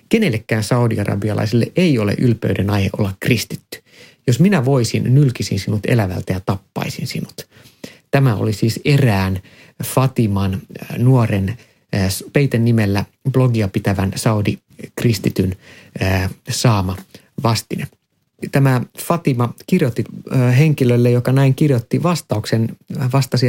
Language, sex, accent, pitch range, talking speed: Finnish, male, native, 110-140 Hz, 100 wpm